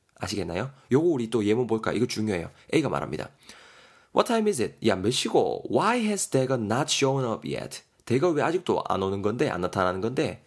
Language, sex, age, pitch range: Korean, male, 20-39, 110-145 Hz